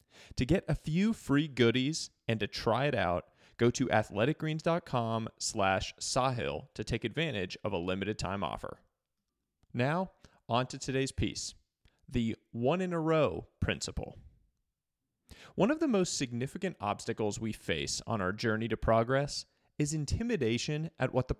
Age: 30-49